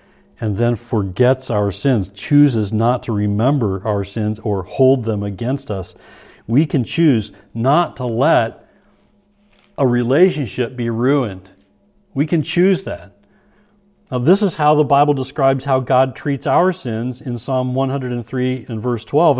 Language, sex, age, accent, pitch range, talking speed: English, male, 40-59, American, 115-150 Hz, 150 wpm